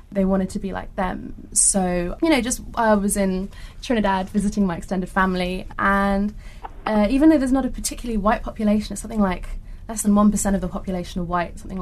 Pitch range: 180-215 Hz